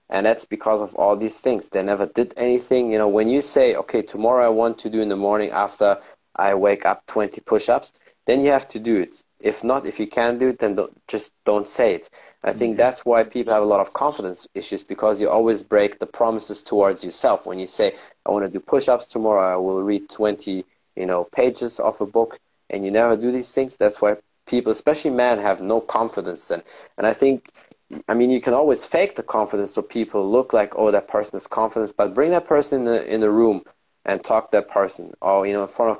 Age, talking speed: 20-39, 235 wpm